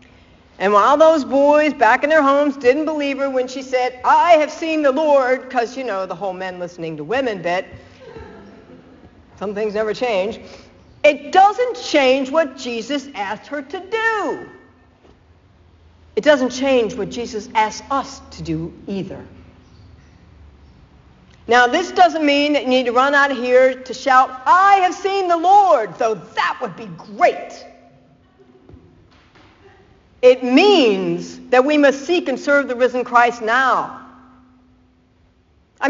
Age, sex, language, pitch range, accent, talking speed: 60-79, female, English, 210-325 Hz, American, 150 wpm